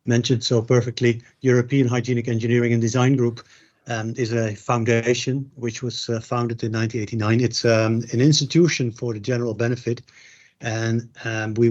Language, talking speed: English, 155 wpm